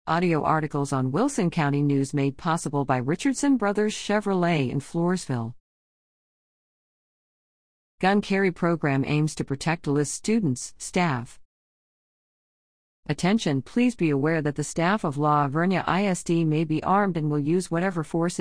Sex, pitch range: female, 140-185 Hz